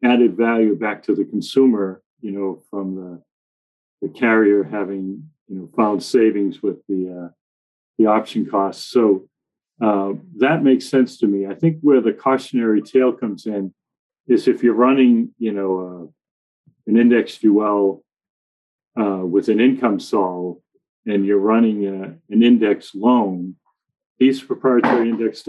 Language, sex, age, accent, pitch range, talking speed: English, male, 40-59, American, 95-120 Hz, 150 wpm